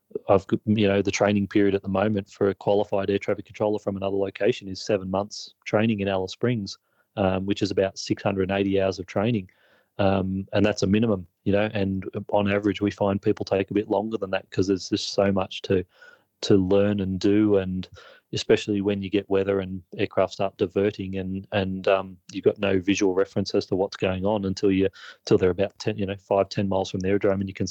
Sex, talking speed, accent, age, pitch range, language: male, 220 wpm, Australian, 30-49, 95-105 Hz, English